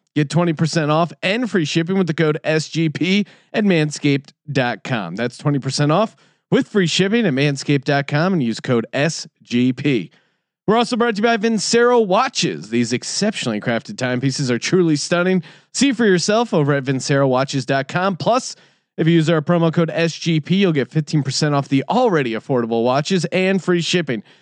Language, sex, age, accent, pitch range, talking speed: English, male, 30-49, American, 135-190 Hz, 155 wpm